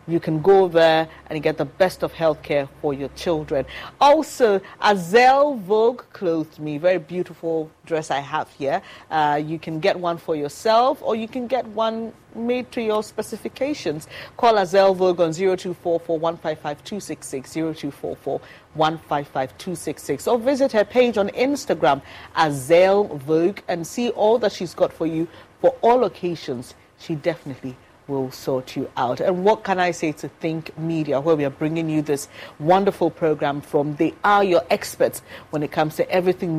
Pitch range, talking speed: 150-205 Hz, 165 wpm